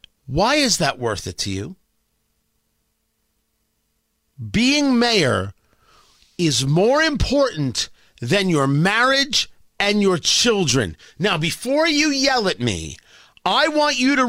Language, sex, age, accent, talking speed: English, male, 40-59, American, 120 wpm